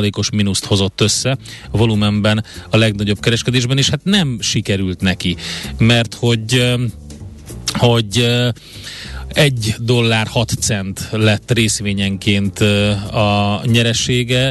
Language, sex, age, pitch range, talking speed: Hungarian, male, 30-49, 100-120 Hz, 100 wpm